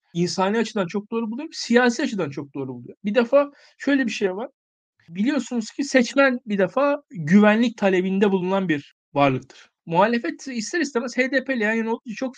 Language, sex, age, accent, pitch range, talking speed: Turkish, male, 50-69, native, 175-250 Hz, 160 wpm